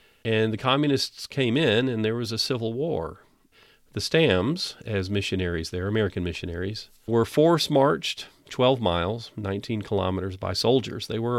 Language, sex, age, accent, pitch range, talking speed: English, male, 40-59, American, 95-120 Hz, 150 wpm